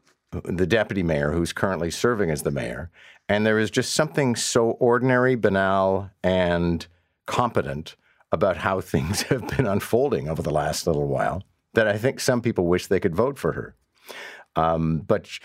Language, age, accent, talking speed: English, 50-69, American, 165 wpm